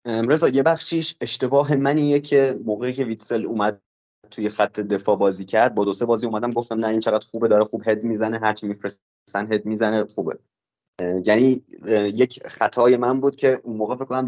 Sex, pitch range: male, 105-130 Hz